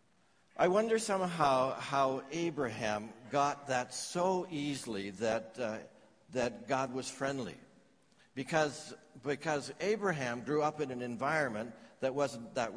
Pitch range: 135-170 Hz